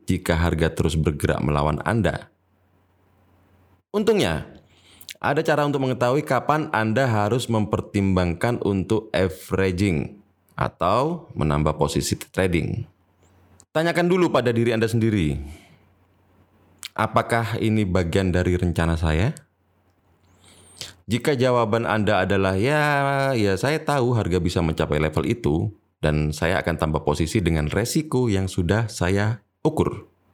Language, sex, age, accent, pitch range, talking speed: Indonesian, male, 30-49, native, 90-115 Hz, 115 wpm